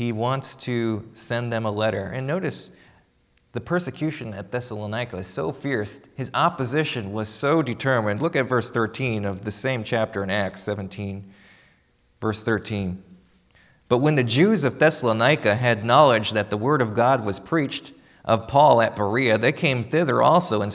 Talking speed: 170 wpm